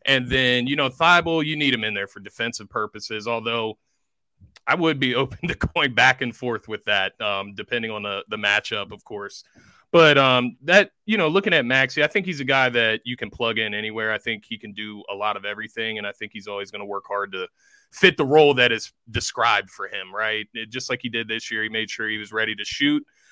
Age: 30-49